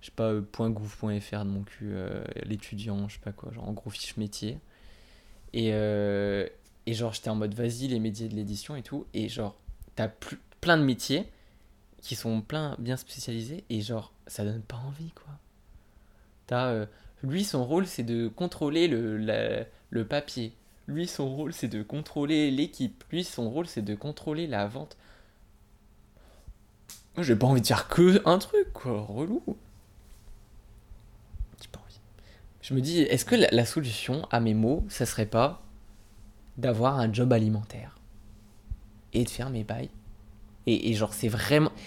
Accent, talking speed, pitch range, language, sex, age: French, 165 wpm, 105-130 Hz, French, male, 20-39